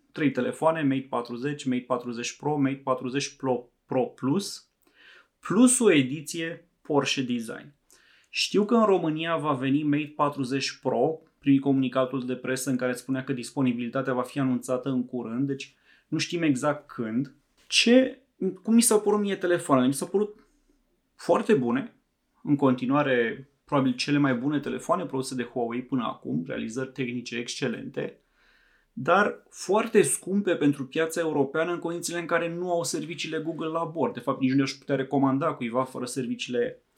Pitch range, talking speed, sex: 125-160 Hz, 160 wpm, male